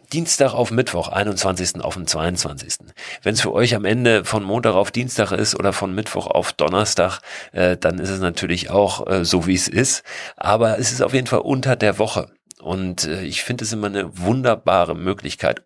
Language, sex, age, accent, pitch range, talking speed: German, male, 40-59, German, 75-100 Hz, 195 wpm